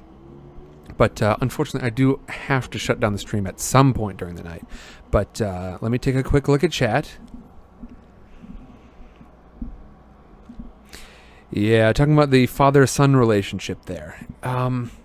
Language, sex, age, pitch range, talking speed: English, male, 30-49, 100-130 Hz, 140 wpm